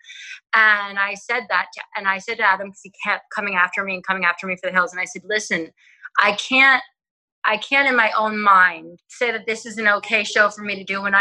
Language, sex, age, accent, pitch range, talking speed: English, female, 30-49, American, 195-230 Hz, 250 wpm